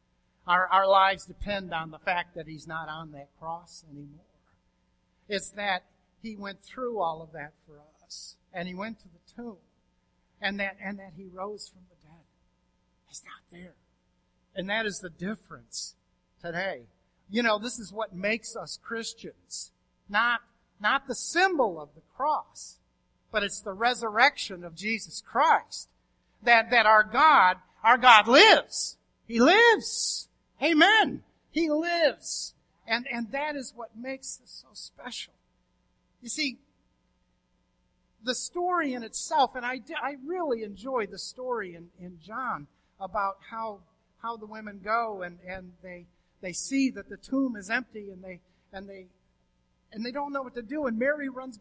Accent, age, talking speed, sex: American, 50-69, 160 wpm, male